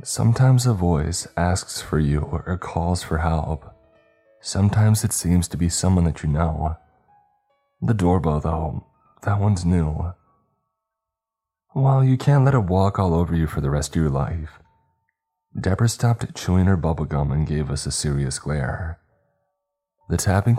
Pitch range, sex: 80-115 Hz, male